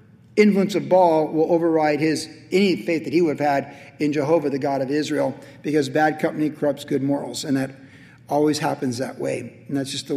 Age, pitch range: 50-69, 145-180 Hz